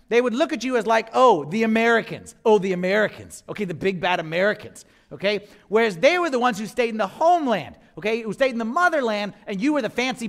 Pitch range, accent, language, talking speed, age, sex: 175-240 Hz, American, English, 235 wpm, 40-59, male